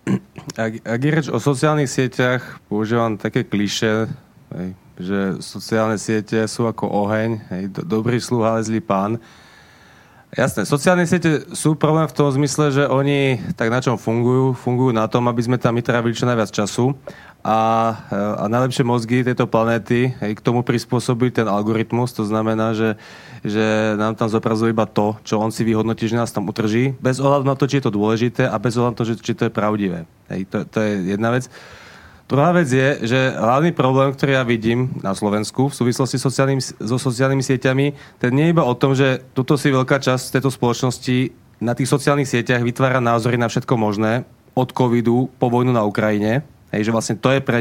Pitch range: 110-130 Hz